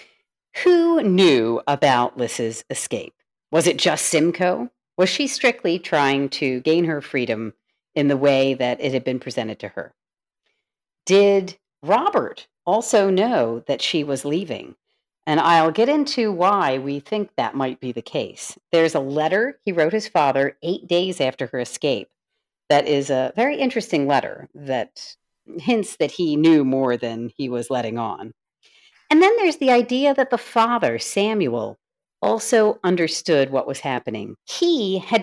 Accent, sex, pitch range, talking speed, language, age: American, female, 140-220 Hz, 155 wpm, English, 50-69